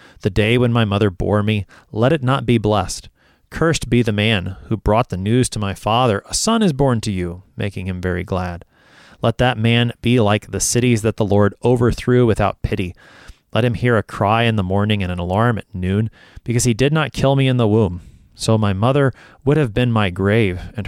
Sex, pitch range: male, 95-120 Hz